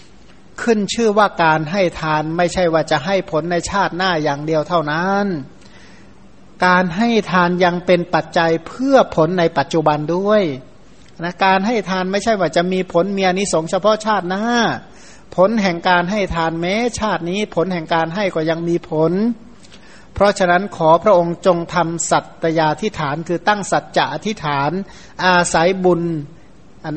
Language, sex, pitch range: Thai, male, 160-195 Hz